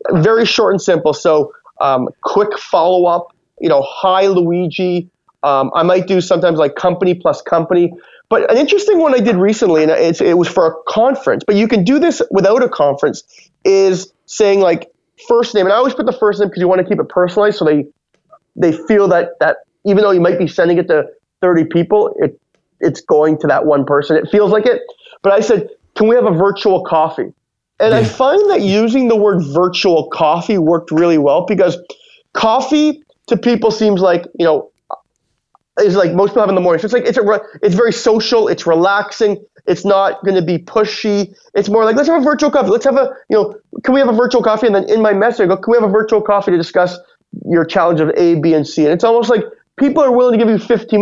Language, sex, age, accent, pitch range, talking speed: English, male, 30-49, American, 175-230 Hz, 230 wpm